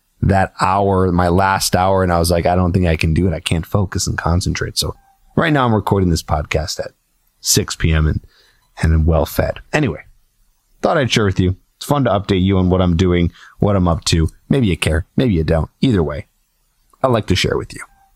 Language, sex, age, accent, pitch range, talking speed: English, male, 30-49, American, 90-120 Hz, 230 wpm